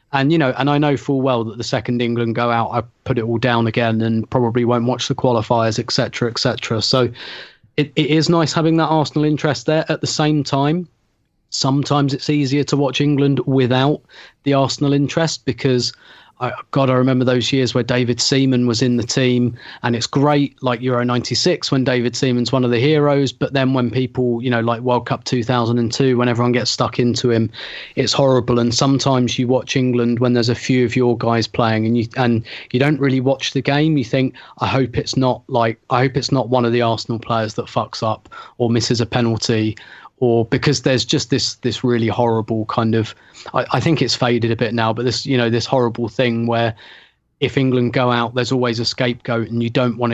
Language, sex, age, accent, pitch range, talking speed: English, male, 30-49, British, 120-135 Hz, 215 wpm